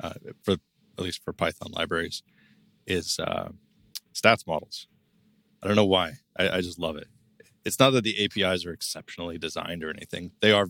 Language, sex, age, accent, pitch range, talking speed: English, male, 30-49, American, 85-100 Hz, 180 wpm